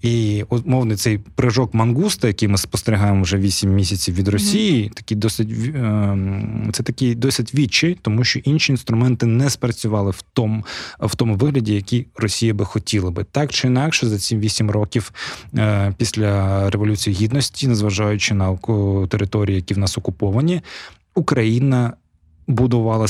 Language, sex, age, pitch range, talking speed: Ukrainian, male, 20-39, 100-120 Hz, 140 wpm